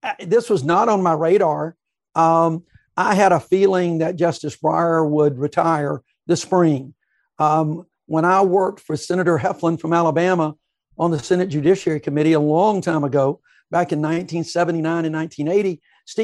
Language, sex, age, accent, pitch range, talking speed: English, male, 60-79, American, 160-190 Hz, 150 wpm